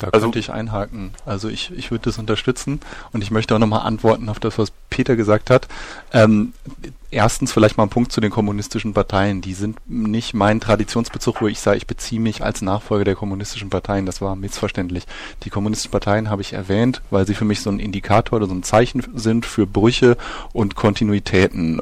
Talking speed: 200 wpm